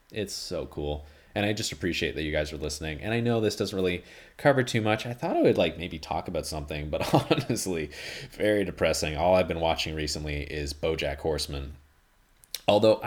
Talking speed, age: 200 wpm, 30-49